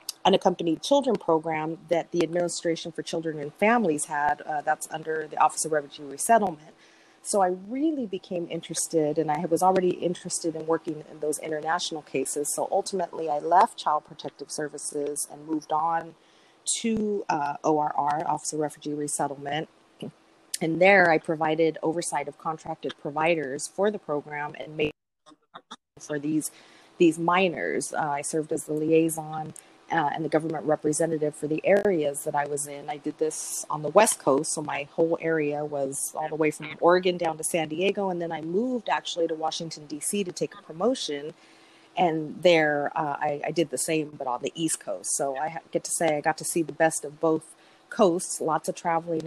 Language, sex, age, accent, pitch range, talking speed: English, female, 30-49, American, 150-170 Hz, 185 wpm